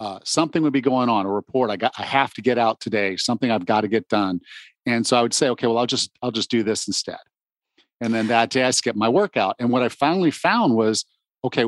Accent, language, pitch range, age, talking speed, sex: American, English, 110-130 Hz, 50-69, 260 wpm, male